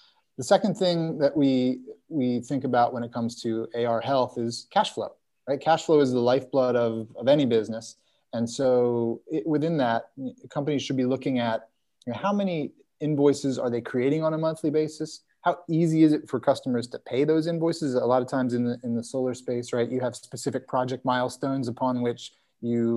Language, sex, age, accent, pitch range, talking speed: English, male, 30-49, American, 120-140 Hz, 205 wpm